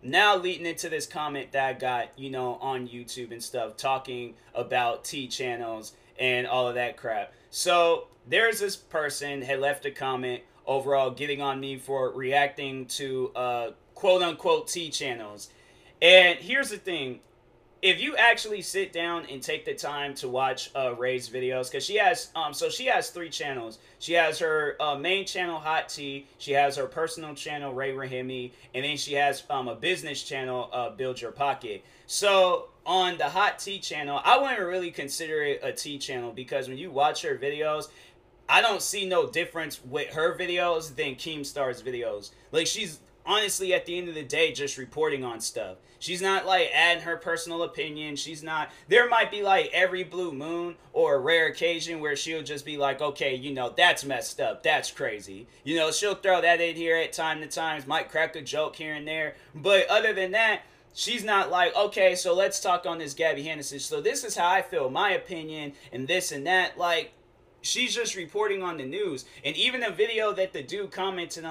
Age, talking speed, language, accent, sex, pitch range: 20-39, 195 wpm, English, American, male, 135-190 Hz